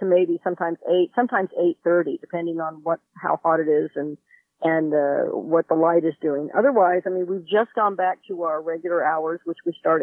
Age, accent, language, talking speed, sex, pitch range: 50-69, American, English, 210 wpm, female, 170-215 Hz